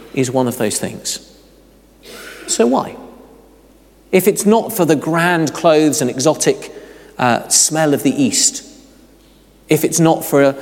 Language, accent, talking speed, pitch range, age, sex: English, British, 145 wpm, 140-195 Hz, 40-59, male